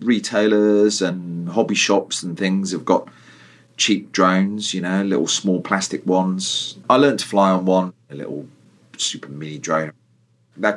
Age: 40-59